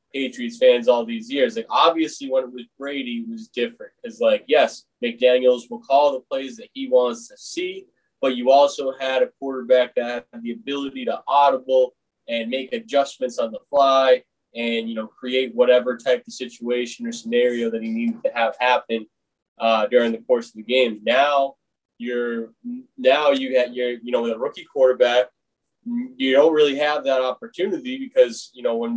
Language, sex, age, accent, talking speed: English, male, 20-39, American, 185 wpm